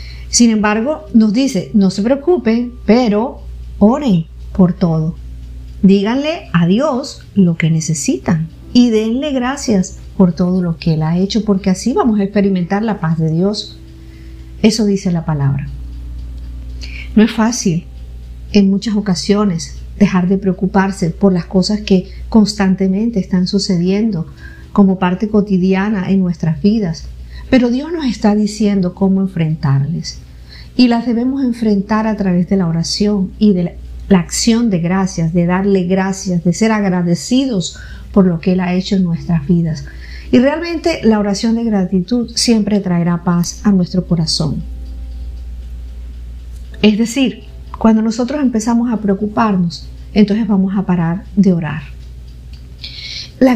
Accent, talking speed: American, 140 wpm